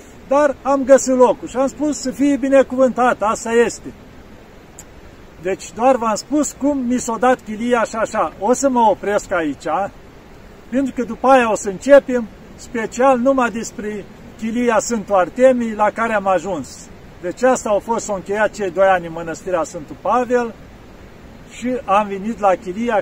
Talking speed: 165 wpm